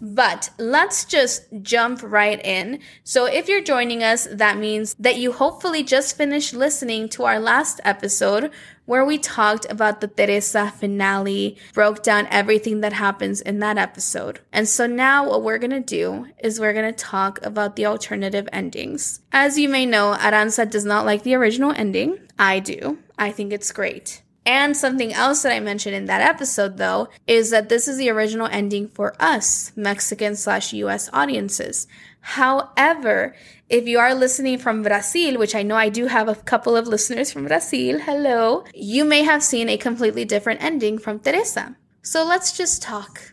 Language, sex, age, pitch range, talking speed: English, female, 10-29, 210-270 Hz, 180 wpm